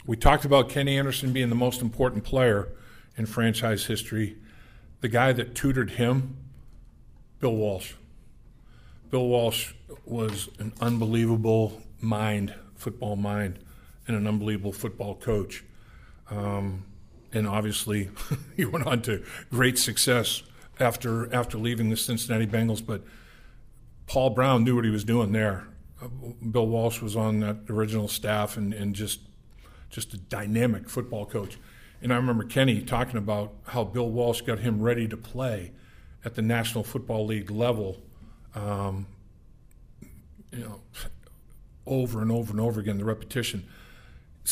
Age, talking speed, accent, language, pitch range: 50-69, 145 wpm, American, English, 105-125 Hz